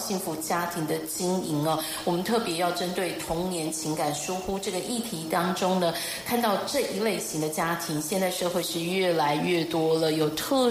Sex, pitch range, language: female, 160-195 Hz, Chinese